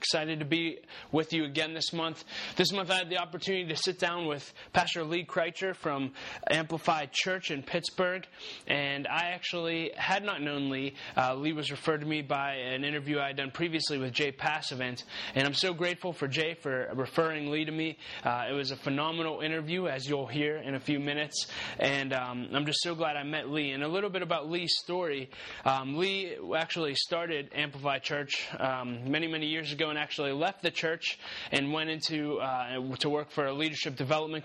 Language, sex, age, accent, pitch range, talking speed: English, male, 20-39, American, 140-165 Hz, 200 wpm